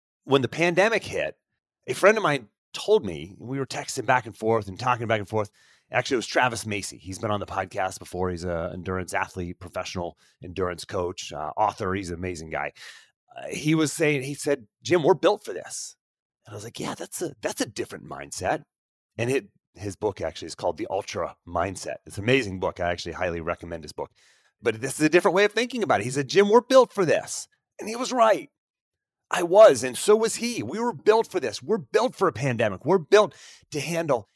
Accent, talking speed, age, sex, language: American, 220 wpm, 30-49, male, English